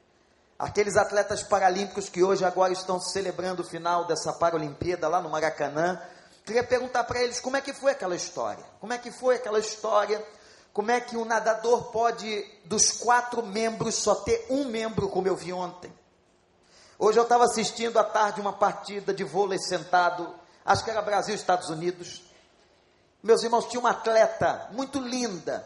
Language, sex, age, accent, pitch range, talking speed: Portuguese, male, 40-59, Brazilian, 180-235 Hz, 170 wpm